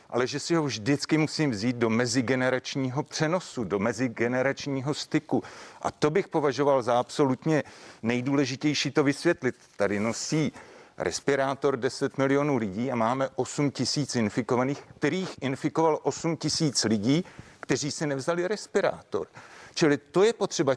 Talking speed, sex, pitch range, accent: 135 wpm, male, 130-160 Hz, native